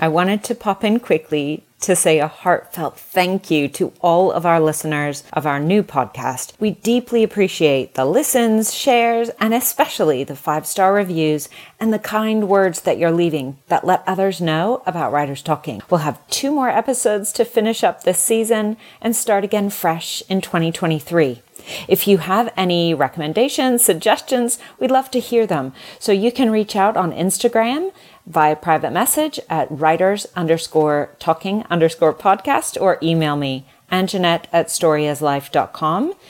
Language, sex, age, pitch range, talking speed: English, female, 40-59, 155-220 Hz, 155 wpm